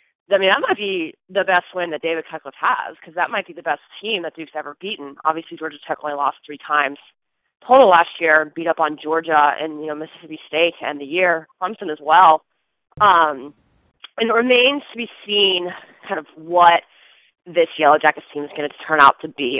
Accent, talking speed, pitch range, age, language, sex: American, 210 wpm, 150-190 Hz, 30-49, English, female